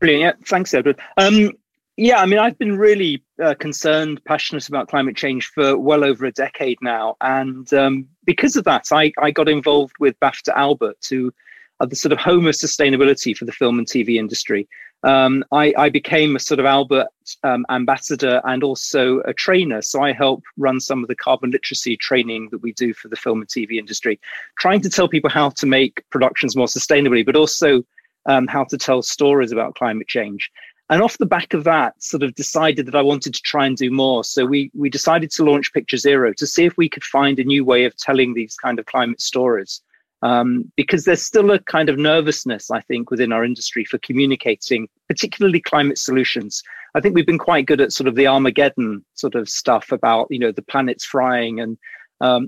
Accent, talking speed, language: British, 210 wpm, English